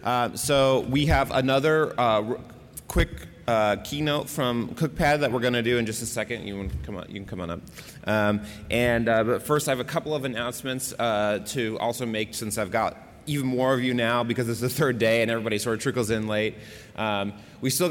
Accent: American